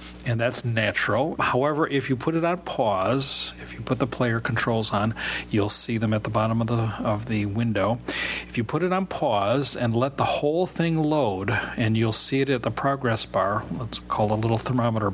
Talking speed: 215 wpm